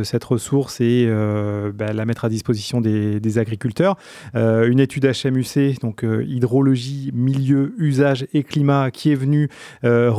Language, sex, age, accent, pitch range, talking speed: French, male, 30-49, French, 115-140 Hz, 155 wpm